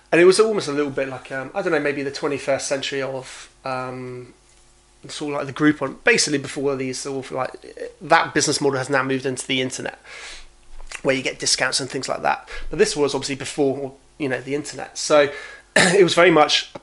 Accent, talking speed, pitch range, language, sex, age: British, 220 wpm, 135-160 Hz, English, male, 30-49